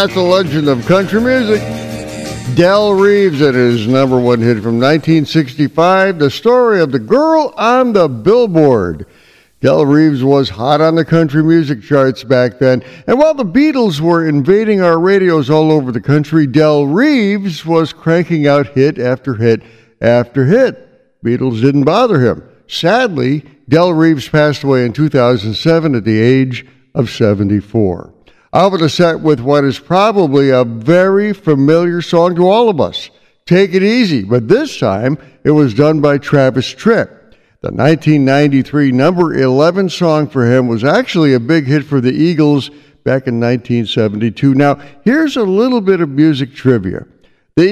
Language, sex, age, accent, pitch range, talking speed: English, male, 60-79, American, 130-175 Hz, 160 wpm